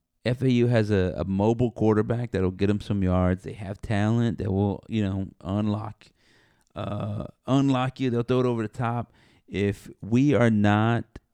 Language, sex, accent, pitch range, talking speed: English, male, American, 95-110 Hz, 170 wpm